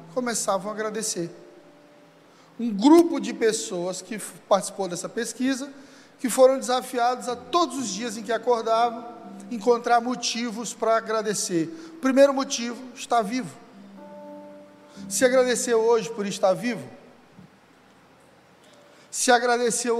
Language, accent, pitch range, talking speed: Portuguese, Brazilian, 185-240 Hz, 110 wpm